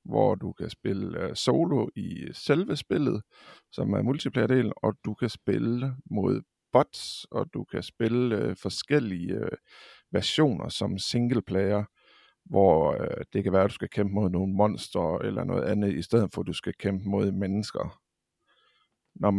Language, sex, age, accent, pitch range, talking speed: English, male, 50-69, Danish, 95-115 Hz, 150 wpm